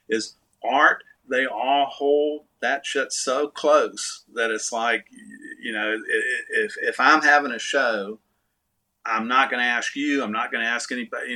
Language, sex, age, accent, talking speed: English, male, 50-69, American, 175 wpm